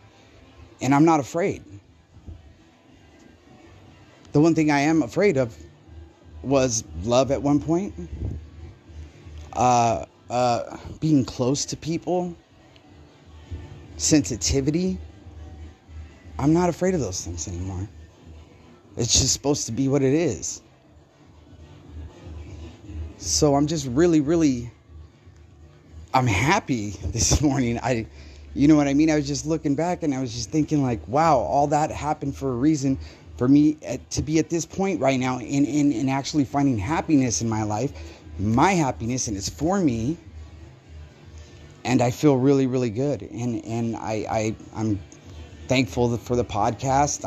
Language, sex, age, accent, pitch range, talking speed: English, male, 30-49, American, 90-150 Hz, 140 wpm